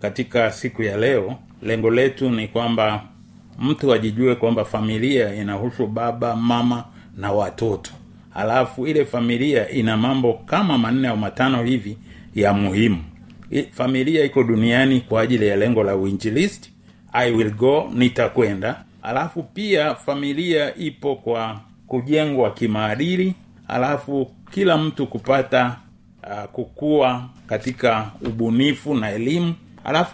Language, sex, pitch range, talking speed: Swahili, male, 115-150 Hz, 120 wpm